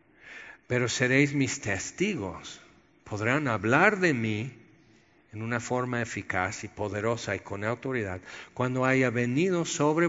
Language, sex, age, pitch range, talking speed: Spanish, male, 50-69, 115-150 Hz, 125 wpm